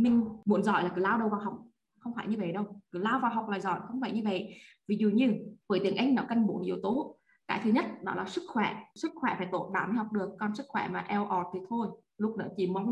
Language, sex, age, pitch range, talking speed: Vietnamese, female, 20-39, 200-260 Hz, 290 wpm